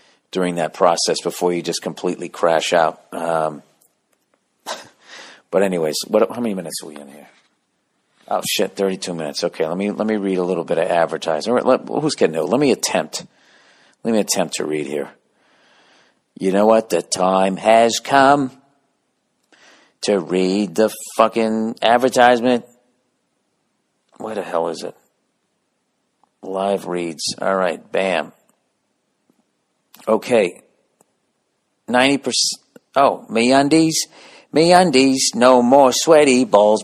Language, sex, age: English, male, 50-69